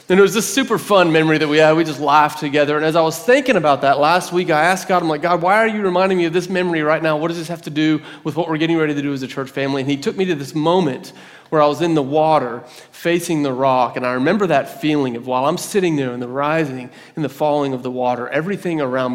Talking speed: 290 wpm